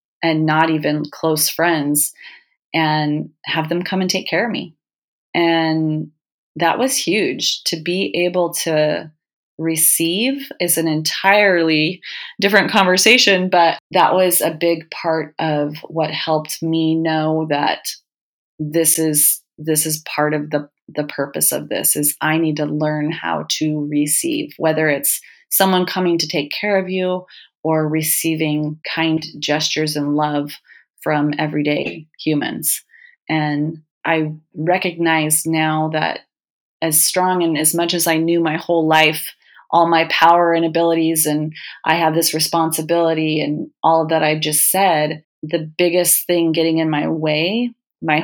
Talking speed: 145 wpm